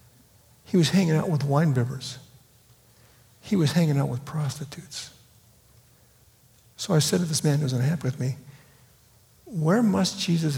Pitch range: 125-160 Hz